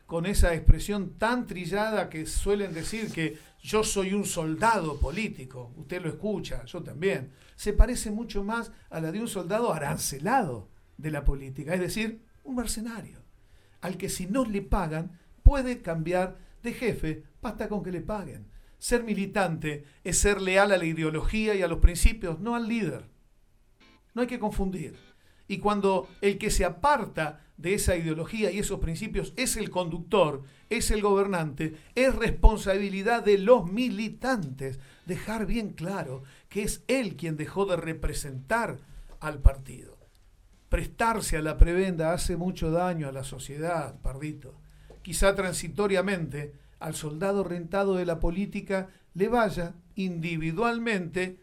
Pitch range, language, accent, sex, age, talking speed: 155-210 Hz, Spanish, Argentinian, male, 50-69, 150 wpm